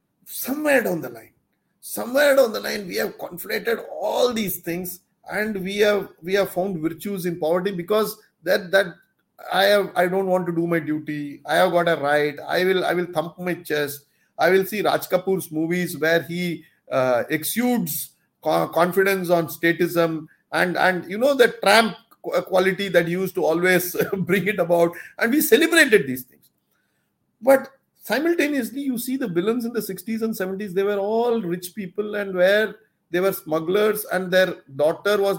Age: 50-69